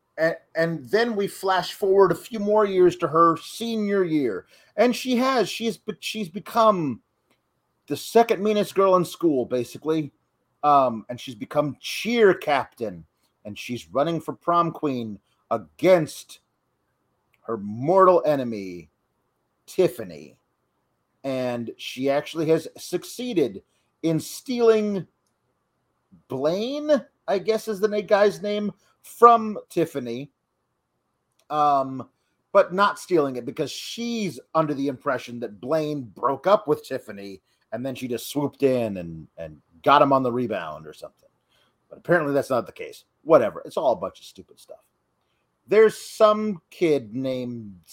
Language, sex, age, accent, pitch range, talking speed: English, male, 40-59, American, 125-200 Hz, 135 wpm